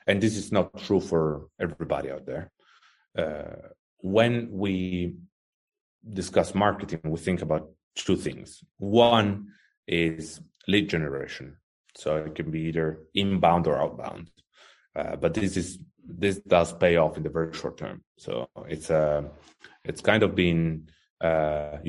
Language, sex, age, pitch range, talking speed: English, male, 30-49, 80-100 Hz, 145 wpm